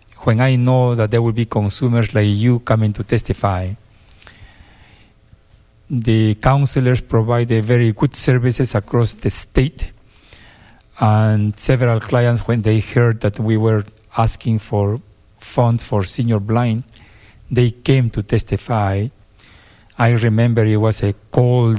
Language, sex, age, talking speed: English, male, 50-69, 130 wpm